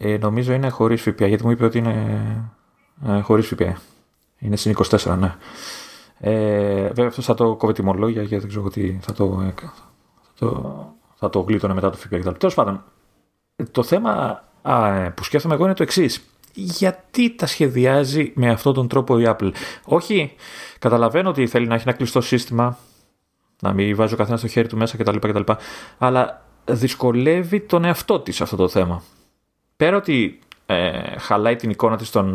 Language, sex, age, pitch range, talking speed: Greek, male, 30-49, 100-130 Hz, 160 wpm